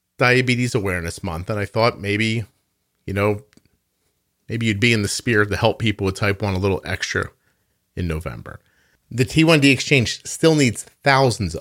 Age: 40-59